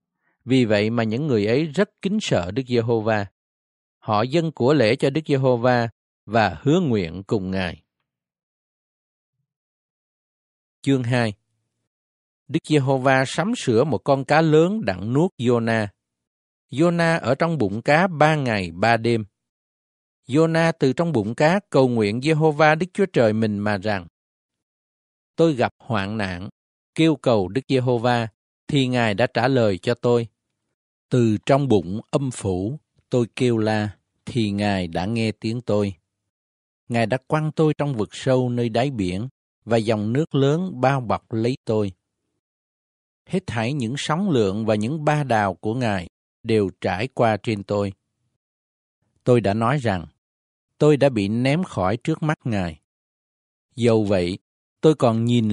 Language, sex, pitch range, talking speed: Vietnamese, male, 100-140 Hz, 150 wpm